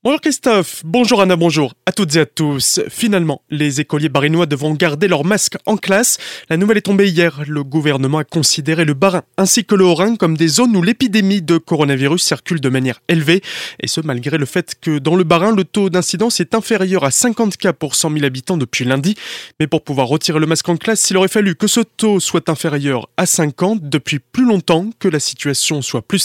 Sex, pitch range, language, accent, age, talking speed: male, 145-195 Hz, French, French, 20-39, 215 wpm